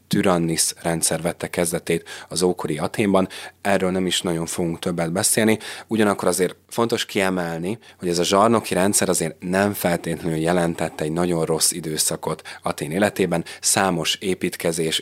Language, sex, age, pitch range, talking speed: Hungarian, male, 30-49, 80-95 Hz, 140 wpm